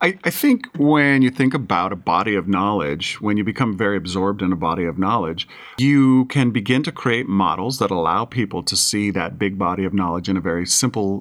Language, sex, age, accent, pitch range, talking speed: English, male, 40-59, American, 95-125 Hz, 215 wpm